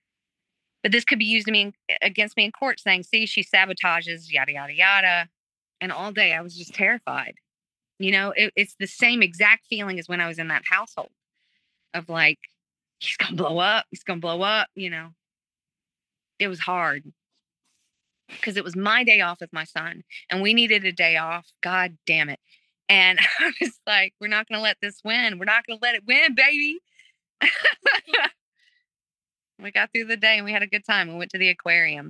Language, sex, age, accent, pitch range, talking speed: English, female, 30-49, American, 165-215 Hz, 200 wpm